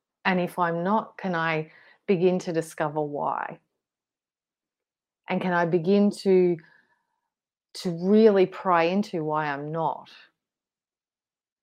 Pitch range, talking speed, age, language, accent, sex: 170-210 Hz, 115 wpm, 30-49, English, Australian, female